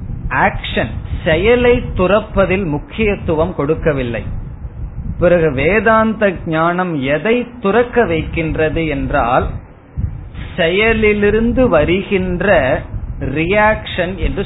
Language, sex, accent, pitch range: Tamil, male, native, 140-200 Hz